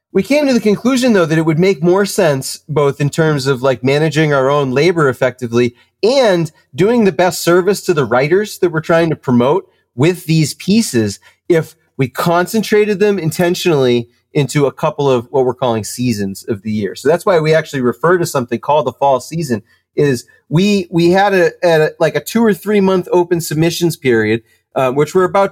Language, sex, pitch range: English, male, 120-175 Hz